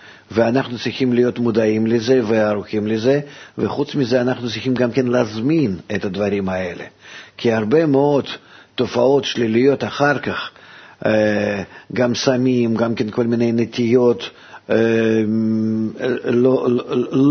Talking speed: 110 wpm